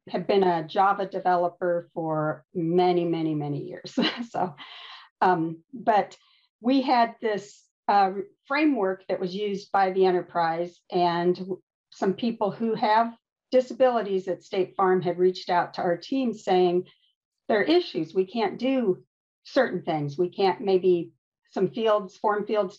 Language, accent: English, American